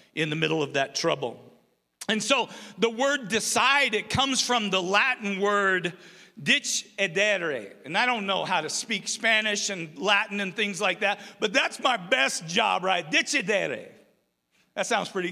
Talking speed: 165 wpm